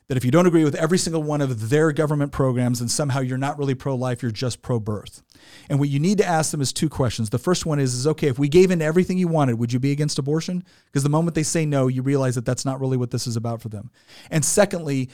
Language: English